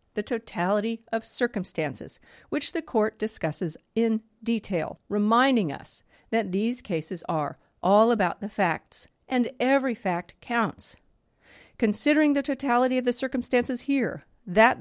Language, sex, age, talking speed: English, female, 50-69, 130 wpm